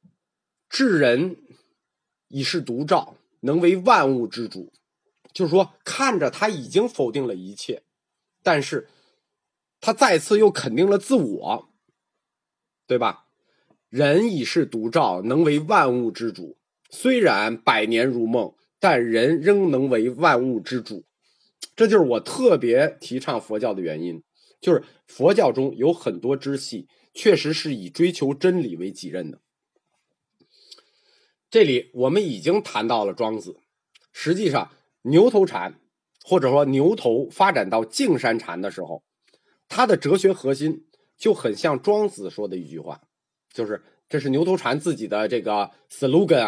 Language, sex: Chinese, male